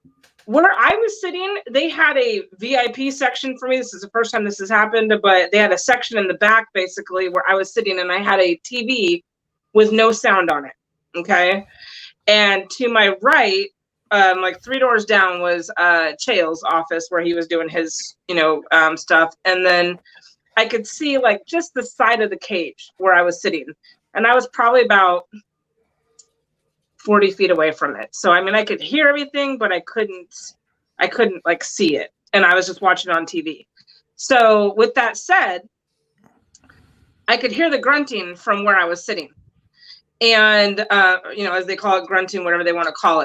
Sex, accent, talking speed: female, American, 195 wpm